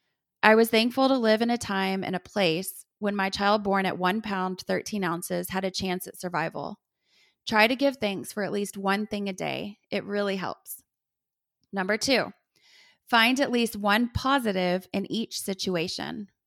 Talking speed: 180 wpm